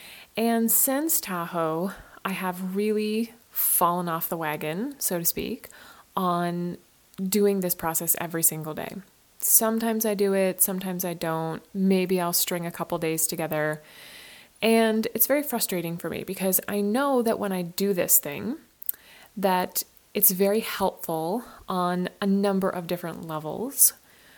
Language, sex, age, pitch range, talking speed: English, female, 20-39, 175-215 Hz, 145 wpm